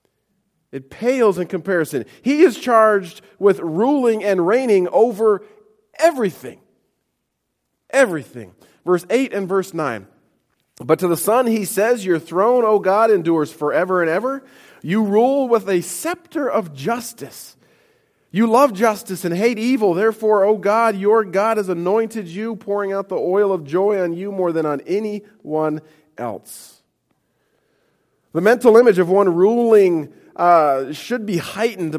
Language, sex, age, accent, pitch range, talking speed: English, male, 40-59, American, 160-220 Hz, 145 wpm